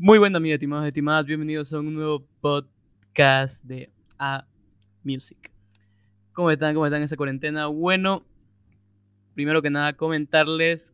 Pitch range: 130-155 Hz